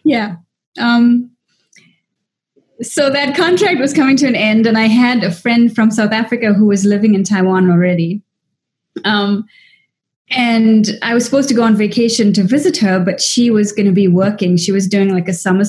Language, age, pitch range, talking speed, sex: Italian, 30-49, 195-245 Hz, 185 wpm, female